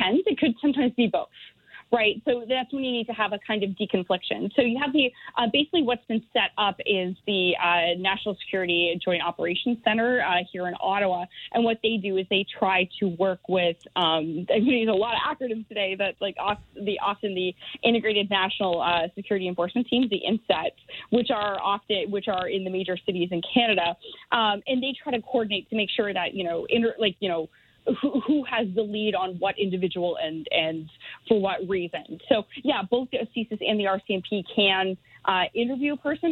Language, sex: English, female